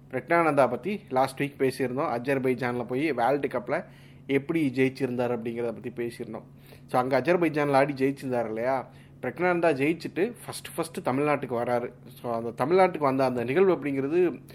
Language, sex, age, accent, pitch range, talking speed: Tamil, male, 30-49, native, 120-140 Hz, 135 wpm